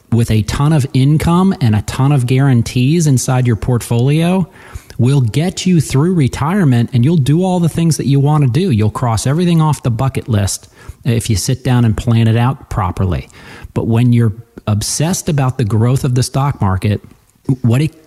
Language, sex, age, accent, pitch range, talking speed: English, male, 40-59, American, 105-135 Hz, 190 wpm